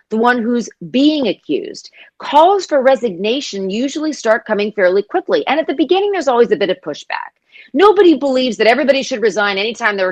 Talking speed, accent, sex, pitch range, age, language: 185 wpm, American, female, 180-275 Hz, 40-59, English